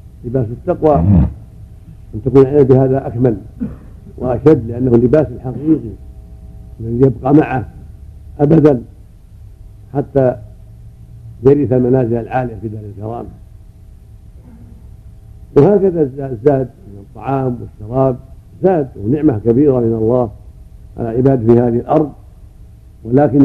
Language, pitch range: Arabic, 105-140 Hz